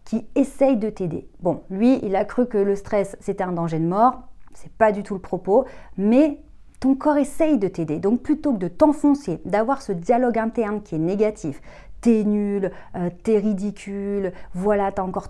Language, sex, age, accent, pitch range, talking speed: French, female, 30-49, French, 180-230 Hz, 195 wpm